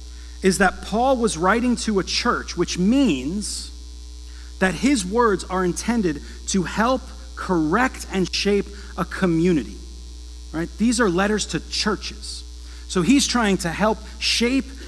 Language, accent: English, American